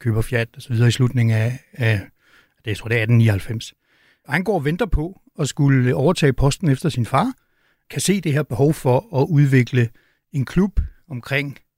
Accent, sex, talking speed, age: native, male, 190 wpm, 60-79